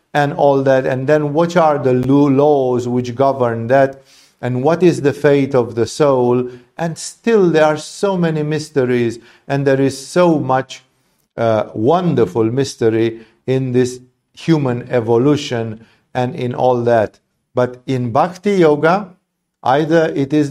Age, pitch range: 50-69, 125-155 Hz